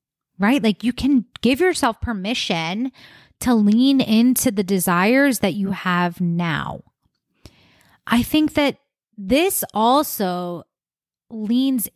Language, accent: English, American